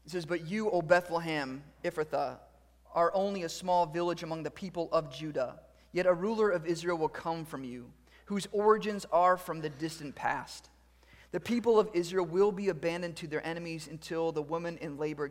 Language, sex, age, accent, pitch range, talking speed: English, male, 30-49, American, 145-180 Hz, 190 wpm